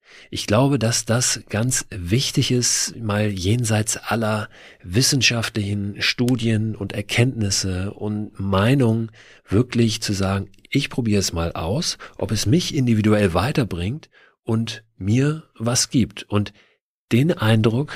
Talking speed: 120 wpm